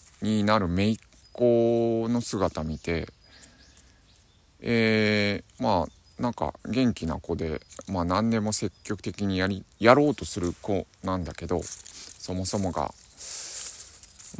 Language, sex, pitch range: Japanese, male, 85-110 Hz